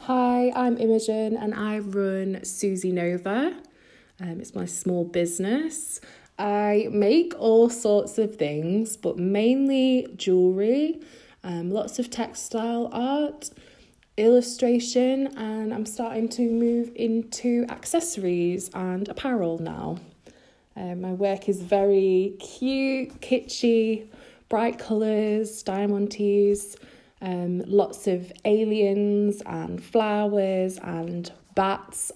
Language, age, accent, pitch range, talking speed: English, 20-39, British, 180-235 Hz, 105 wpm